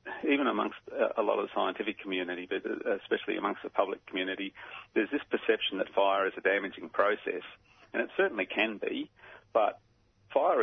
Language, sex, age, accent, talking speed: English, male, 40-59, Australian, 170 wpm